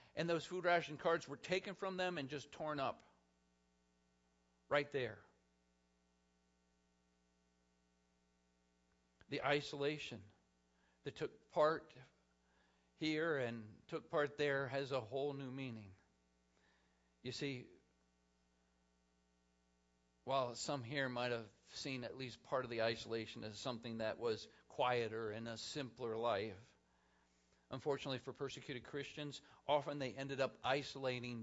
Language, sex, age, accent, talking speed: English, male, 50-69, American, 120 wpm